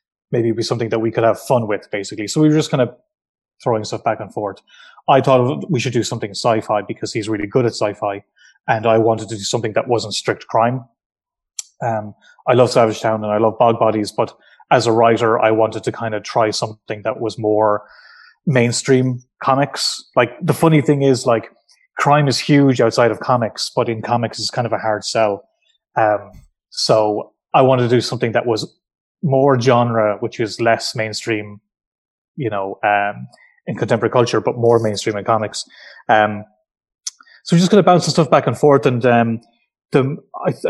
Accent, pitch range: Irish, 110-135 Hz